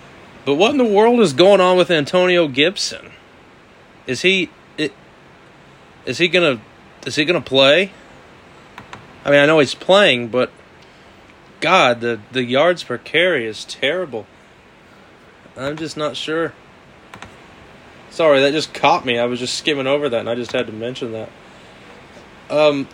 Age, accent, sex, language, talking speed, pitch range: 30-49, American, male, English, 150 wpm, 120-155 Hz